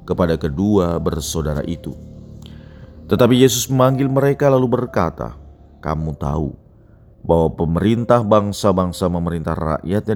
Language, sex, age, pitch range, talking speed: Indonesian, male, 40-59, 75-100 Hz, 100 wpm